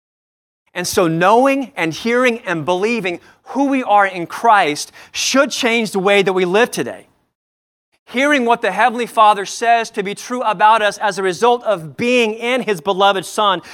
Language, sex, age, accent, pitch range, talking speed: English, male, 30-49, American, 190-235 Hz, 175 wpm